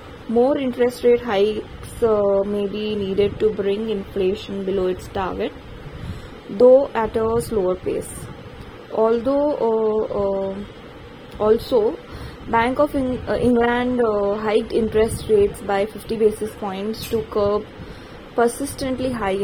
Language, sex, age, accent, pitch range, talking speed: English, female, 20-39, Indian, 205-240 Hz, 125 wpm